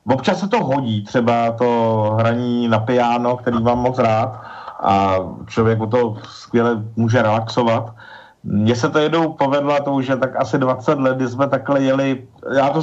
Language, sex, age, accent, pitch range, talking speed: Czech, male, 50-69, native, 120-150 Hz, 165 wpm